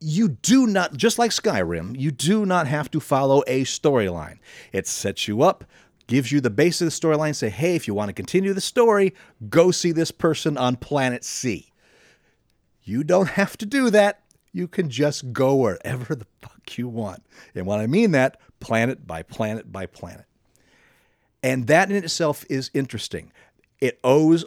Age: 40-59